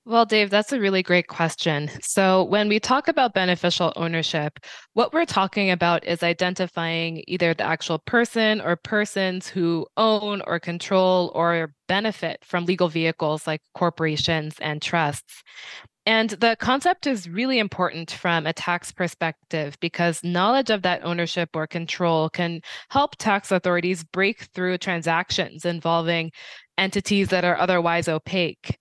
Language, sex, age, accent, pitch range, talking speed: English, female, 20-39, American, 165-195 Hz, 145 wpm